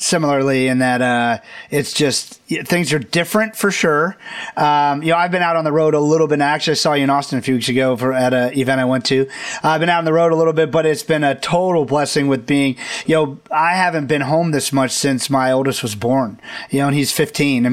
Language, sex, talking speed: English, male, 255 wpm